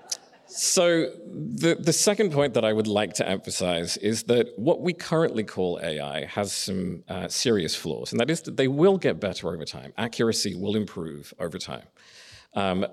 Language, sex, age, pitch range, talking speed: English, male, 40-59, 95-125 Hz, 180 wpm